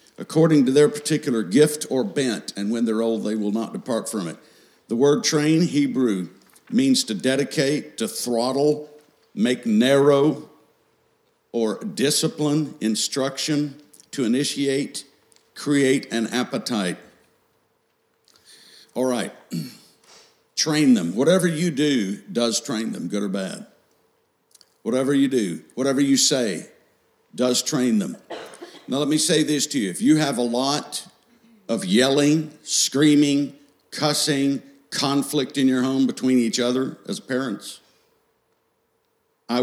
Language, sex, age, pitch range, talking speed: English, male, 50-69, 125-160 Hz, 125 wpm